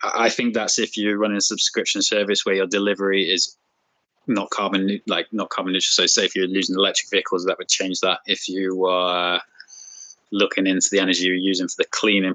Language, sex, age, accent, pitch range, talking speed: English, male, 20-39, British, 95-110 Hz, 205 wpm